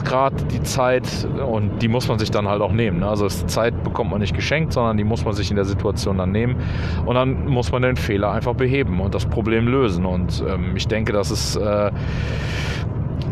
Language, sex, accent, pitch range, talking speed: German, male, German, 105-130 Hz, 210 wpm